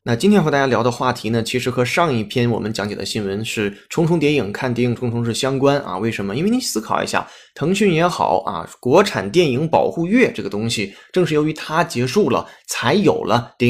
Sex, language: male, Chinese